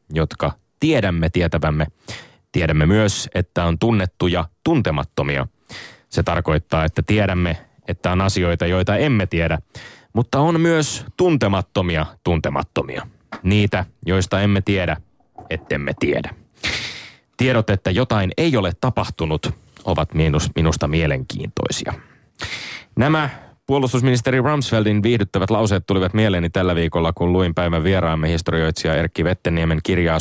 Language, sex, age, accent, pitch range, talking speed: Finnish, male, 30-49, native, 85-110 Hz, 110 wpm